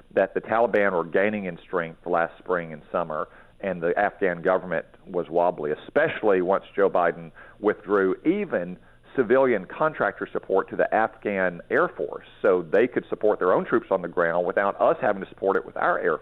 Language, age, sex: English, 50-69, male